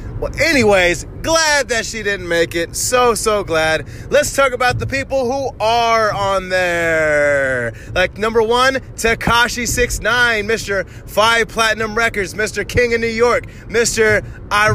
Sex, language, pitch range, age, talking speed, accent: male, English, 150-225 Hz, 20-39, 145 wpm, American